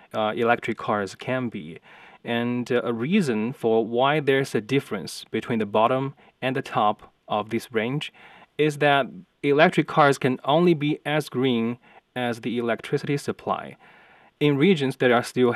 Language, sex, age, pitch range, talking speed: English, male, 20-39, 110-140 Hz, 160 wpm